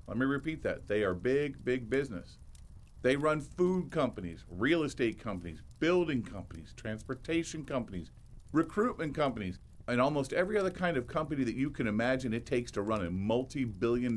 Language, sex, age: English, male, 50-69